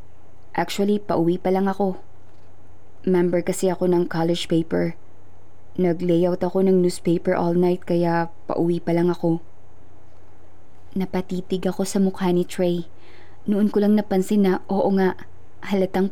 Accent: native